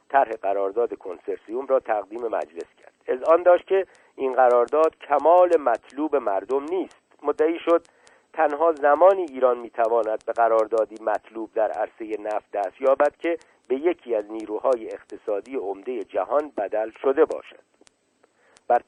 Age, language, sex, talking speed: 50-69, Persian, male, 135 wpm